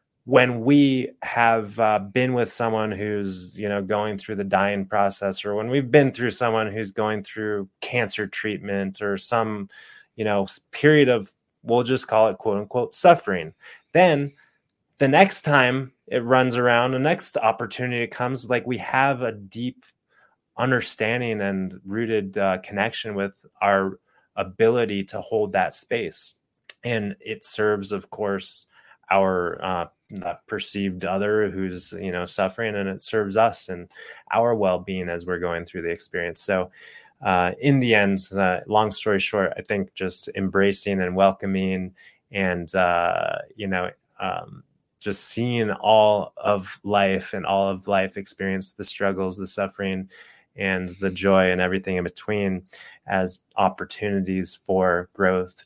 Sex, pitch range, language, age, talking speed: male, 95-115 Hz, English, 20-39, 150 wpm